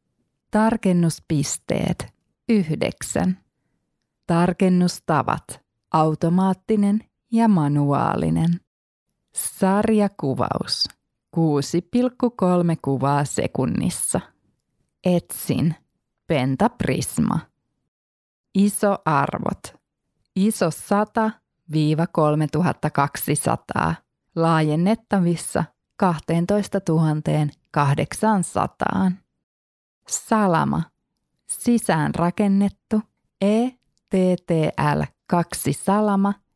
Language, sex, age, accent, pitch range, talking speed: Finnish, female, 20-39, native, 155-200 Hz, 35 wpm